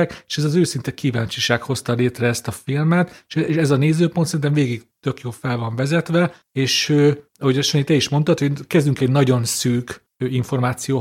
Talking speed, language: 180 wpm, Hungarian